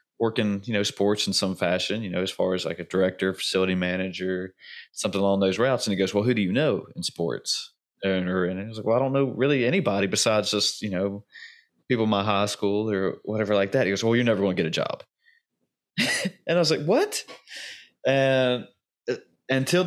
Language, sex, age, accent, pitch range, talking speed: English, male, 20-39, American, 95-120 Hz, 215 wpm